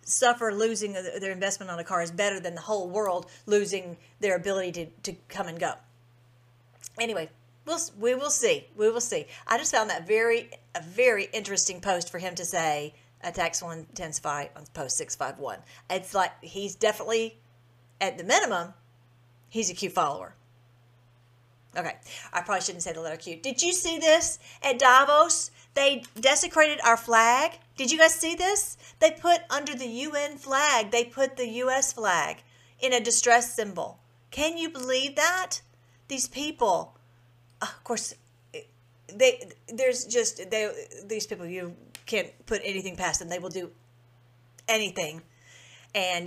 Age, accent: 40-59, American